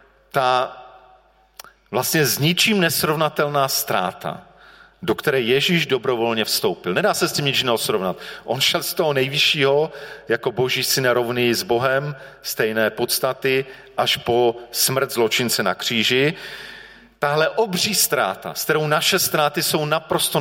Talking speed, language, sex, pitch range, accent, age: 130 wpm, Czech, male, 110-155 Hz, native, 40-59